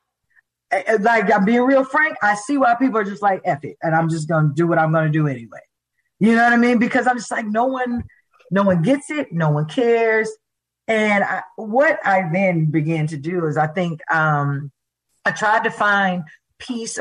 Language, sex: English, female